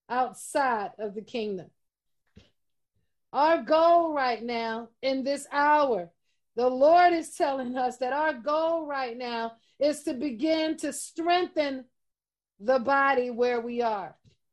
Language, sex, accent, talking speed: English, female, American, 130 wpm